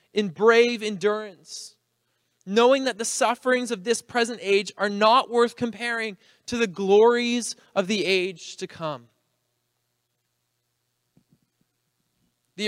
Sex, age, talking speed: male, 20-39, 115 wpm